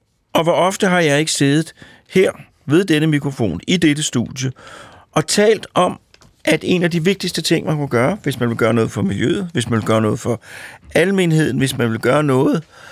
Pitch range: 120-160 Hz